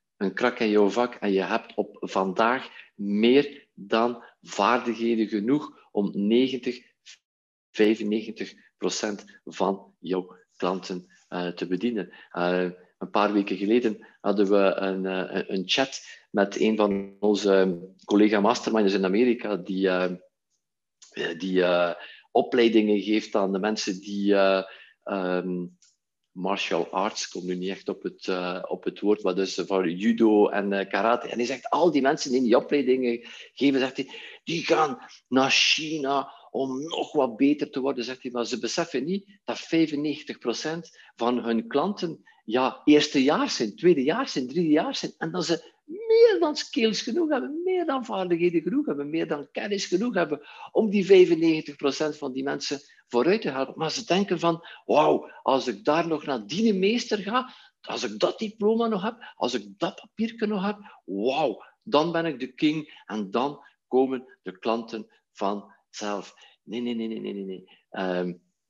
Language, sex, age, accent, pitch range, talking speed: Dutch, male, 50-69, Swiss, 100-160 Hz, 165 wpm